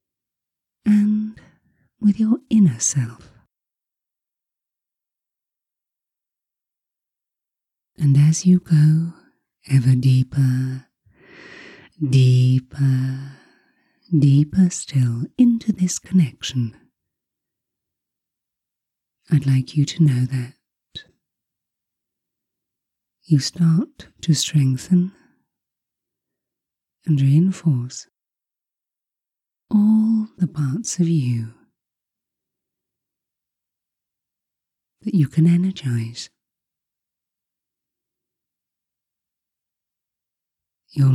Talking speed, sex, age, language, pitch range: 55 wpm, female, 30-49, English, 130-180 Hz